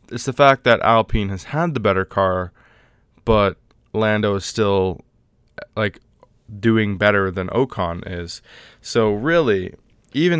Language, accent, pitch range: English, American, 95-115 Hz